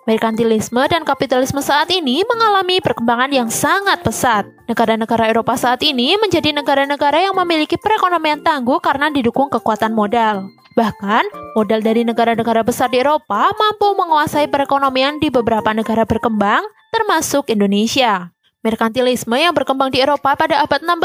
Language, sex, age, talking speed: Indonesian, female, 20-39, 135 wpm